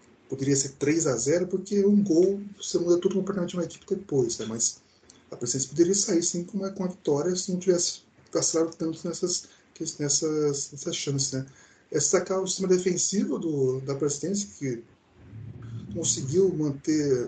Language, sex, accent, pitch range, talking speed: Portuguese, male, Brazilian, 135-185 Hz, 175 wpm